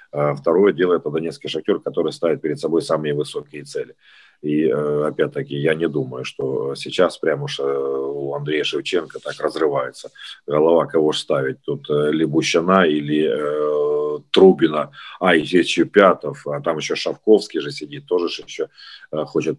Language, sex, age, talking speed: Ukrainian, male, 40-59, 145 wpm